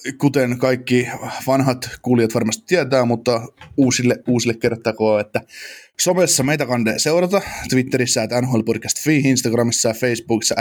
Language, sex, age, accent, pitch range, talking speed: Finnish, male, 20-39, native, 115-140 Hz, 120 wpm